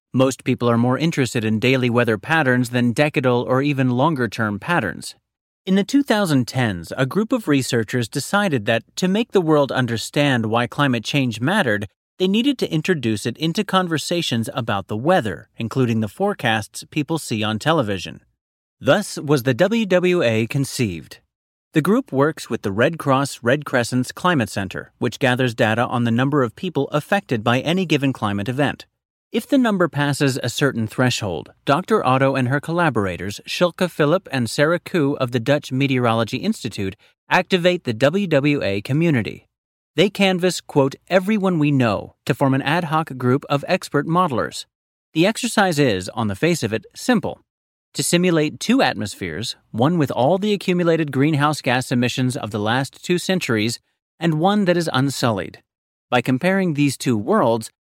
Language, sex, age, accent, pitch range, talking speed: English, male, 30-49, American, 120-170 Hz, 165 wpm